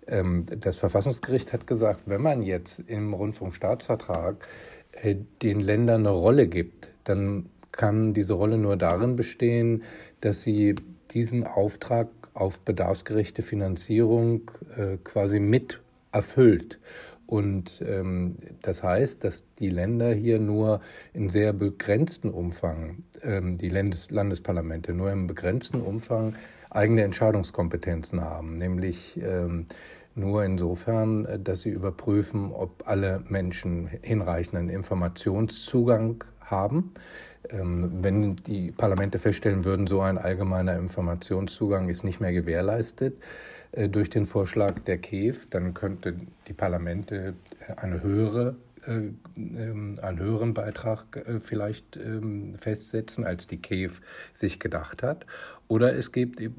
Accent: German